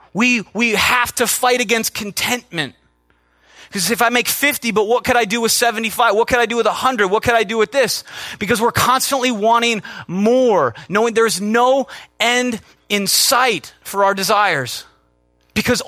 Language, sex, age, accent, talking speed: English, male, 30-49, American, 175 wpm